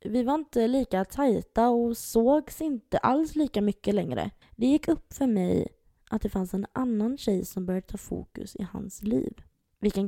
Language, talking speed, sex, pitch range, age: Swedish, 190 wpm, female, 190-235 Hz, 20-39